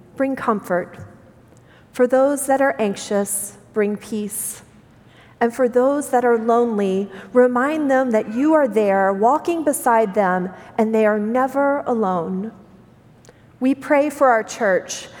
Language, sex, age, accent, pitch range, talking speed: English, female, 40-59, American, 200-265 Hz, 135 wpm